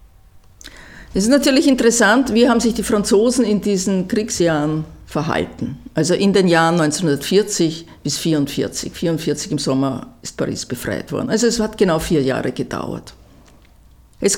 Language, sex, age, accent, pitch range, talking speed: German, female, 50-69, Austrian, 145-215 Hz, 145 wpm